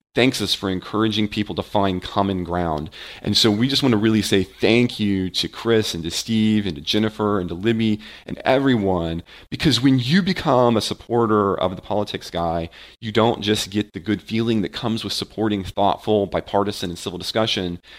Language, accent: English, American